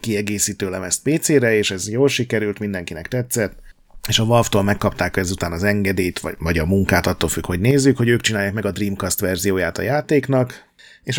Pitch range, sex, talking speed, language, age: 95-120 Hz, male, 180 wpm, Hungarian, 30-49